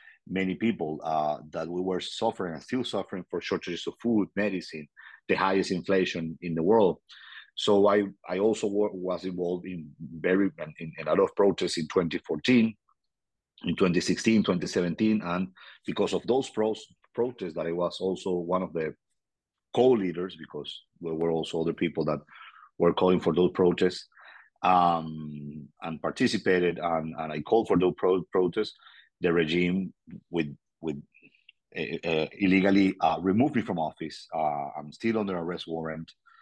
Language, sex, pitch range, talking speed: English, male, 80-95 Hz, 160 wpm